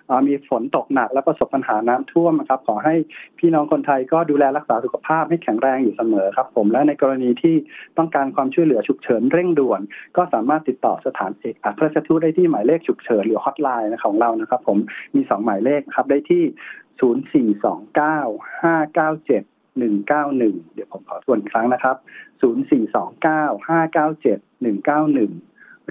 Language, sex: Thai, male